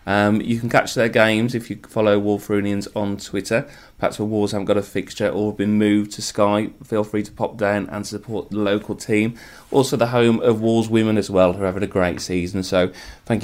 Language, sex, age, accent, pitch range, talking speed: English, male, 30-49, British, 90-105 Hz, 230 wpm